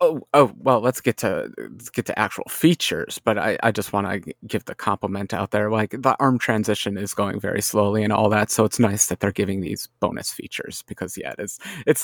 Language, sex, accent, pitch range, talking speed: English, male, American, 110-155 Hz, 230 wpm